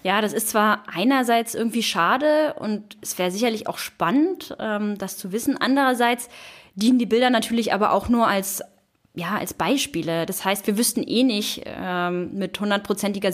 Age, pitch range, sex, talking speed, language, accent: 10-29, 190-245 Hz, female, 165 wpm, German, German